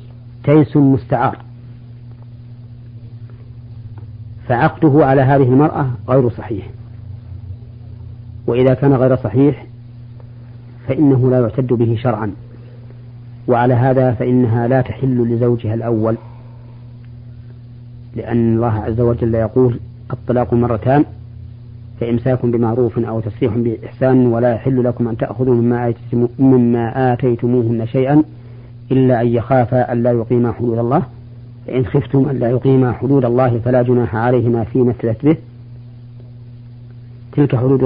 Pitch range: 120-125 Hz